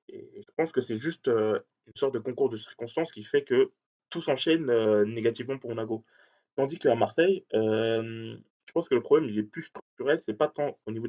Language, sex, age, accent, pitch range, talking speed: French, male, 20-39, French, 110-140 Hz, 205 wpm